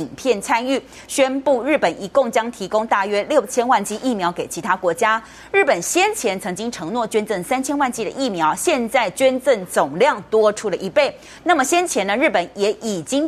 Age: 30-49